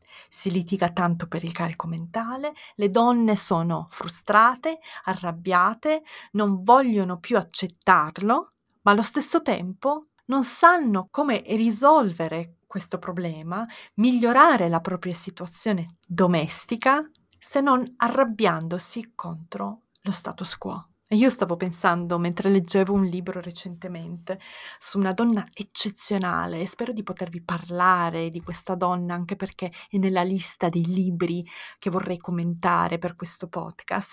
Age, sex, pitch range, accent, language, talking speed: 30-49, female, 175-230 Hz, native, Italian, 125 wpm